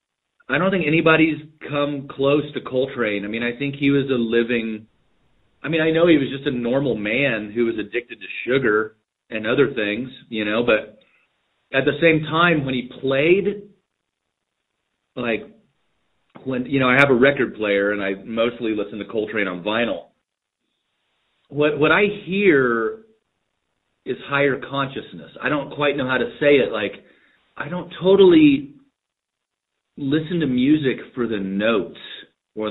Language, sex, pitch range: English, male, 115-160 Hz